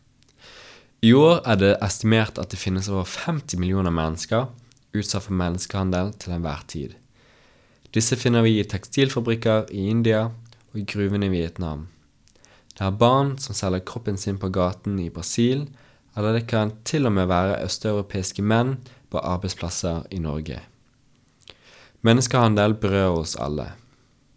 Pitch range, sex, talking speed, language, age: 95-115 Hz, male, 145 wpm, English, 20-39